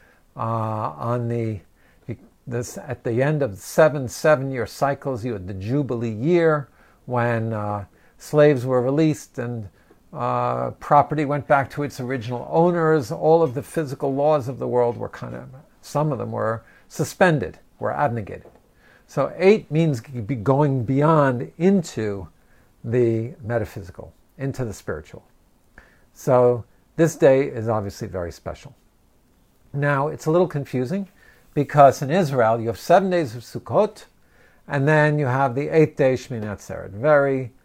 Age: 50-69